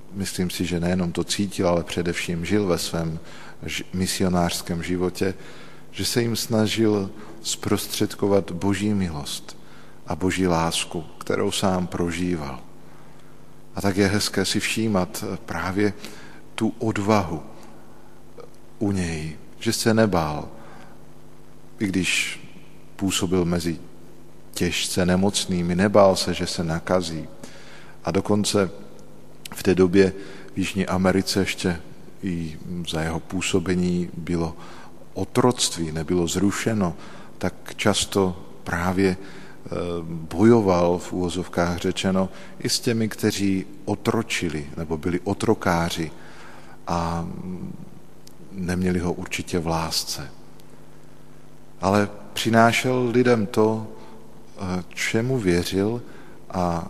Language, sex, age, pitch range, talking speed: Slovak, male, 50-69, 85-105 Hz, 100 wpm